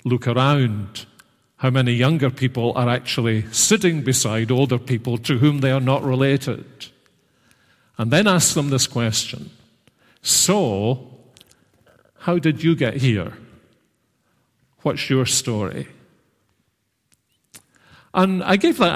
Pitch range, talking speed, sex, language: 115-155 Hz, 115 wpm, male, English